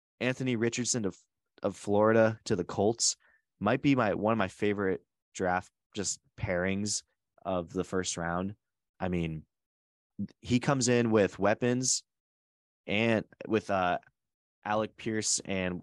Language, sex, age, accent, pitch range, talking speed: English, male, 20-39, American, 90-105 Hz, 135 wpm